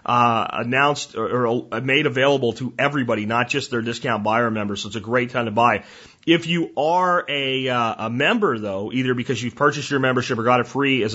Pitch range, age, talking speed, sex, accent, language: 120-165 Hz, 30-49, 220 wpm, male, American, English